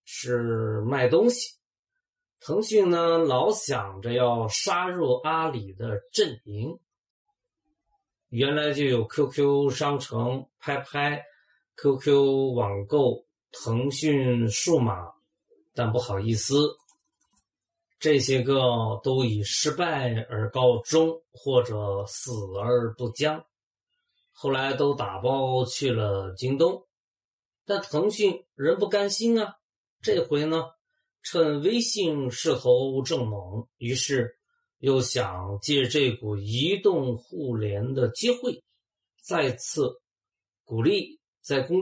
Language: Chinese